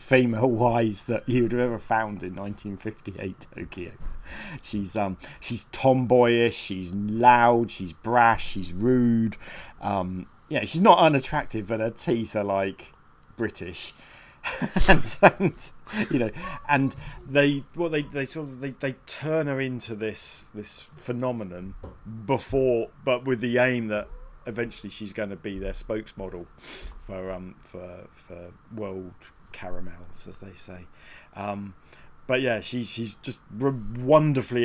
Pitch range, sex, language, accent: 100-130 Hz, male, English, British